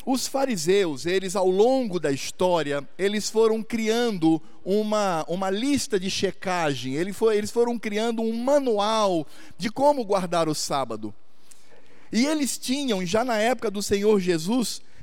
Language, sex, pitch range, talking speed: Portuguese, male, 180-250 Hz, 140 wpm